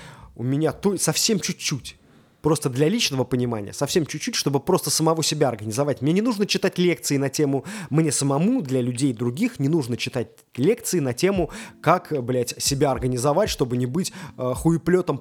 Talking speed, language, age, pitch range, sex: 170 wpm, Russian, 20-39, 140-175 Hz, male